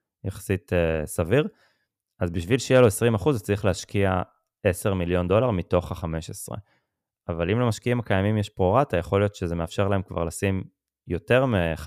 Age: 20-39